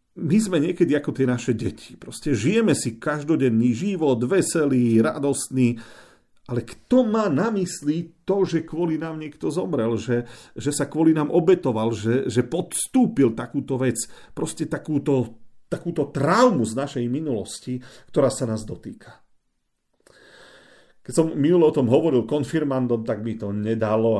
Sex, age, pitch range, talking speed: male, 40-59, 115-160 Hz, 145 wpm